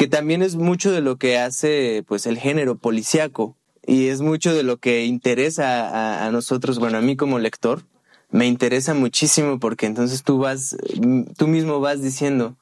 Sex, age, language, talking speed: male, 20-39, Spanish, 180 wpm